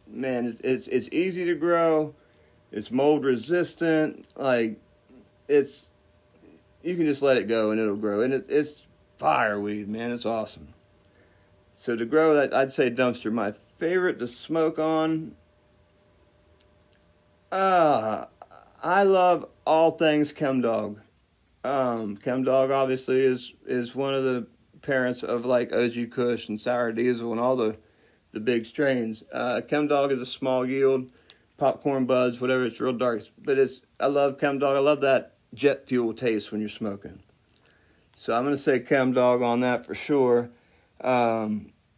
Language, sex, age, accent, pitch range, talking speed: English, male, 40-59, American, 110-145 Hz, 155 wpm